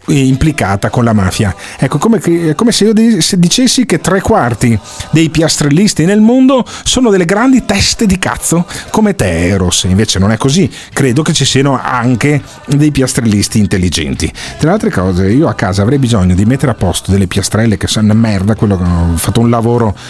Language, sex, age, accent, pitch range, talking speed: Italian, male, 40-59, native, 105-160 Hz, 195 wpm